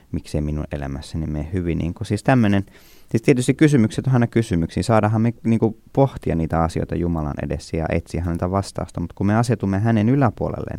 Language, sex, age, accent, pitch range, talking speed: Finnish, male, 20-39, native, 85-105 Hz, 180 wpm